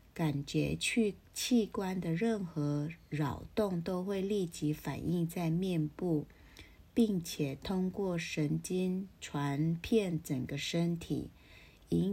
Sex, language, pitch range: female, Chinese, 150-190 Hz